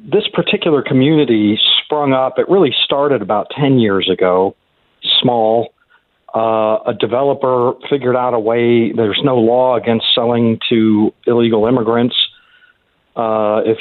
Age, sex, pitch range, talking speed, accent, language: 50-69, male, 110-135 Hz, 130 wpm, American, English